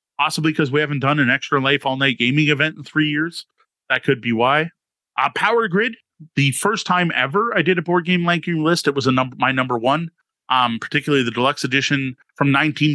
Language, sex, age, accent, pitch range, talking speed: English, male, 30-49, American, 130-165 Hz, 220 wpm